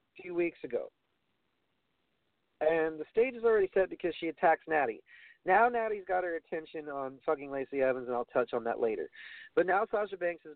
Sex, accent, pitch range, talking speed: male, American, 135-200 Hz, 190 wpm